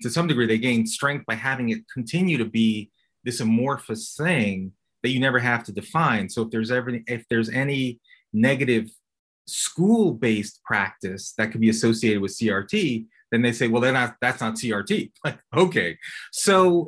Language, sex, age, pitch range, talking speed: English, male, 30-49, 110-155 Hz, 175 wpm